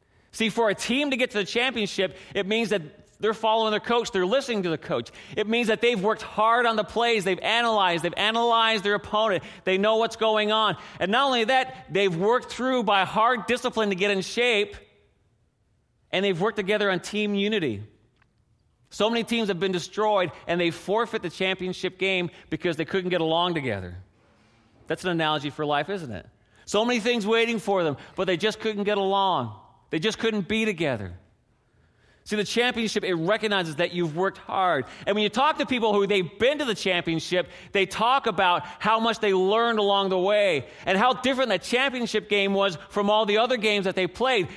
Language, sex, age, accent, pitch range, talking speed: English, male, 40-59, American, 175-225 Hz, 200 wpm